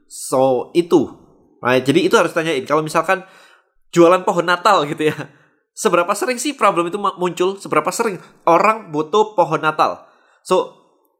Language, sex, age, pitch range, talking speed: Indonesian, male, 20-39, 135-185 Hz, 145 wpm